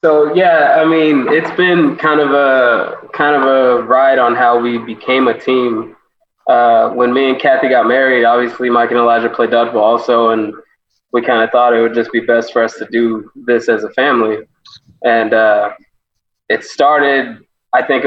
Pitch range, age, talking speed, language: 115-135 Hz, 20-39, 190 wpm, English